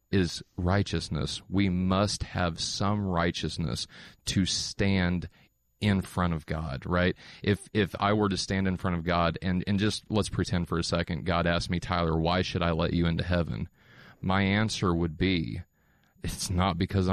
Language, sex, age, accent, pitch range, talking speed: English, male, 30-49, American, 85-105 Hz, 175 wpm